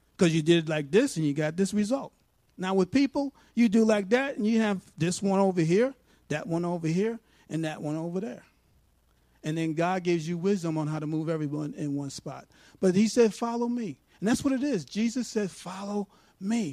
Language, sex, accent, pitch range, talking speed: English, male, American, 145-215 Hz, 220 wpm